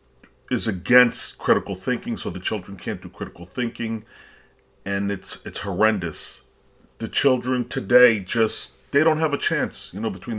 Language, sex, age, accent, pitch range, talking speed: English, male, 40-59, American, 100-130 Hz, 155 wpm